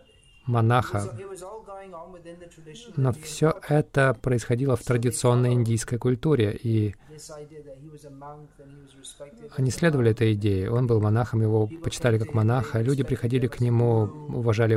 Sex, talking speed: male, 105 wpm